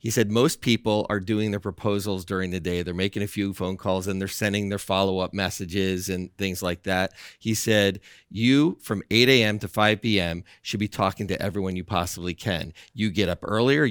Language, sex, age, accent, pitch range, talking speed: English, male, 40-59, American, 95-110 Hz, 205 wpm